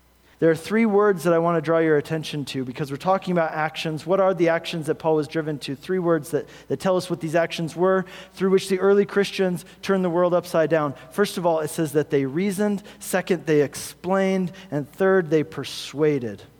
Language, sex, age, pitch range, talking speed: English, male, 40-59, 155-195 Hz, 220 wpm